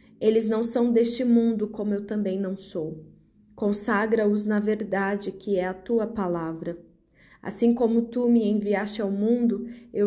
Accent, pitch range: Brazilian, 195-220 Hz